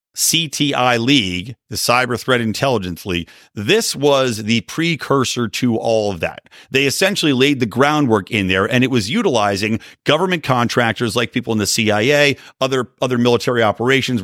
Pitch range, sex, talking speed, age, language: 100-135 Hz, male, 155 wpm, 40-59, English